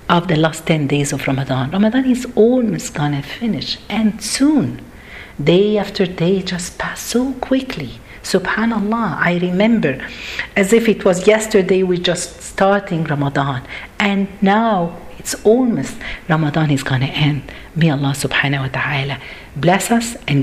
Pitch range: 145-225 Hz